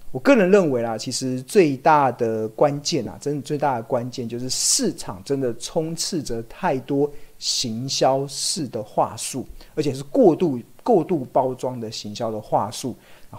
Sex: male